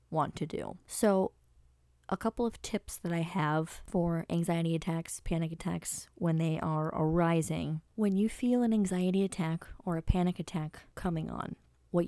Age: 30-49